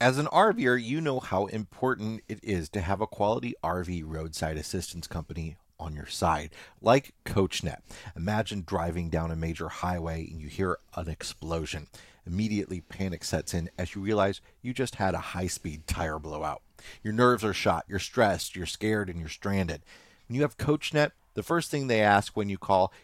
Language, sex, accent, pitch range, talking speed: English, male, American, 85-120 Hz, 180 wpm